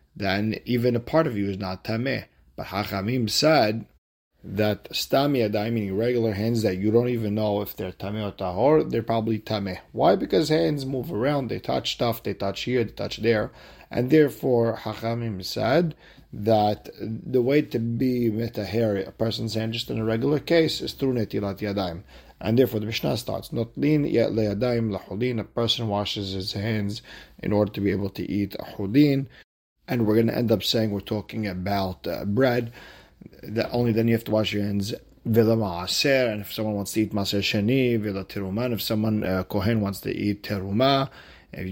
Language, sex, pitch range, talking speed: English, male, 100-120 Hz, 190 wpm